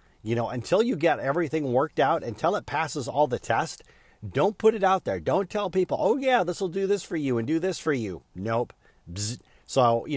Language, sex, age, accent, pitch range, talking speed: English, male, 40-59, American, 115-160 Hz, 230 wpm